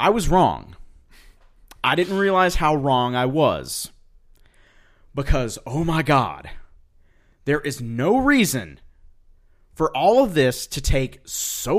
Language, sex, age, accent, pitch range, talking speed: English, male, 30-49, American, 105-160 Hz, 125 wpm